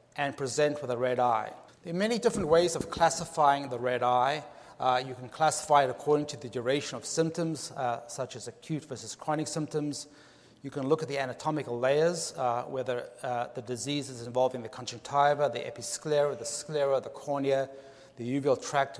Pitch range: 125-150 Hz